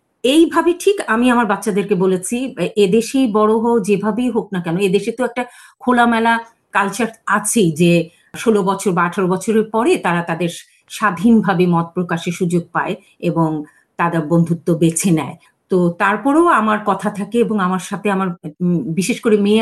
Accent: native